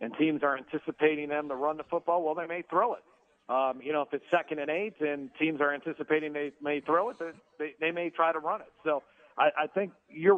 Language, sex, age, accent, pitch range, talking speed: English, male, 40-59, American, 140-165 Hz, 245 wpm